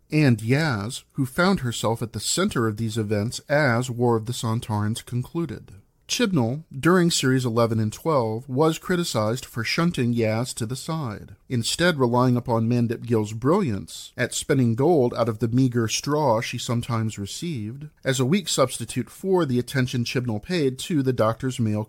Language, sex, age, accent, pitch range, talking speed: English, male, 40-59, American, 115-140 Hz, 165 wpm